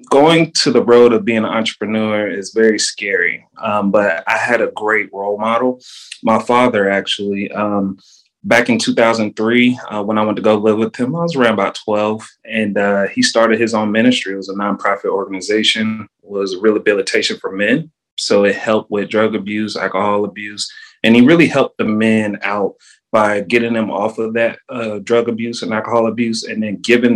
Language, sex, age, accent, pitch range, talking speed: English, male, 30-49, American, 105-125 Hz, 190 wpm